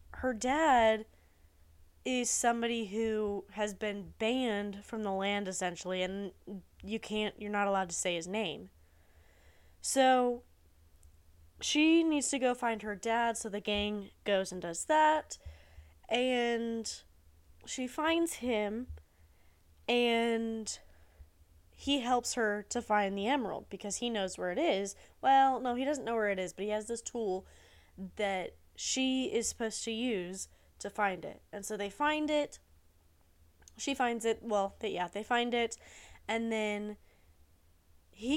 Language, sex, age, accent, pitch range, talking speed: English, female, 10-29, American, 170-240 Hz, 145 wpm